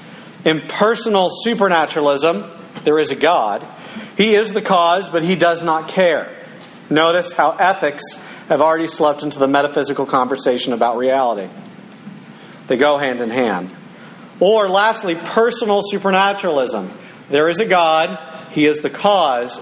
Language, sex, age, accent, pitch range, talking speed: English, male, 50-69, American, 140-200 Hz, 140 wpm